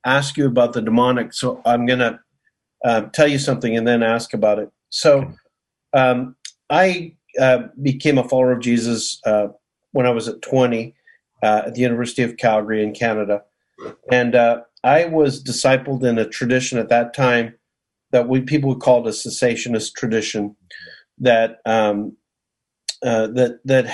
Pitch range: 115-135 Hz